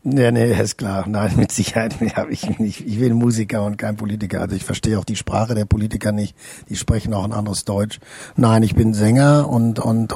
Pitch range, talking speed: 110-125 Hz, 225 wpm